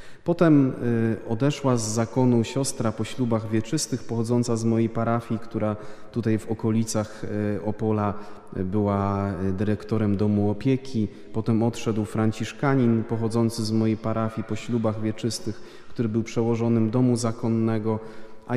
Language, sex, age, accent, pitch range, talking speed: Polish, male, 30-49, native, 105-120 Hz, 120 wpm